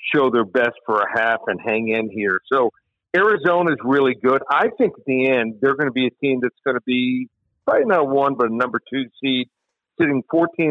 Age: 50-69